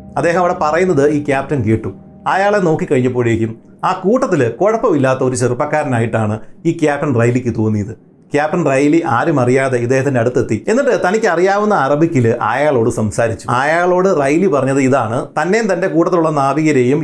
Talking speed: 130 wpm